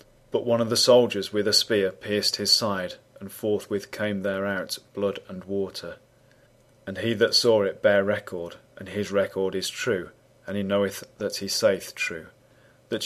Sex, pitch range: male, 100-115 Hz